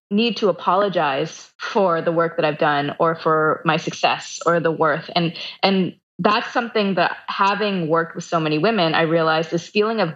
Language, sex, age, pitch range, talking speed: English, female, 20-39, 160-190 Hz, 190 wpm